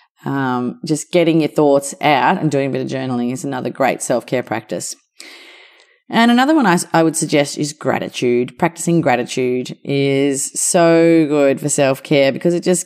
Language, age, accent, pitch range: English, 30-49, Australian, 140-180 Hz